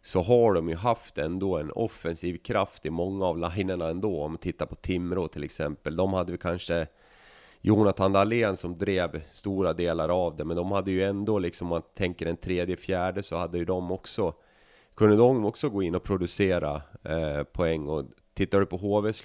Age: 30-49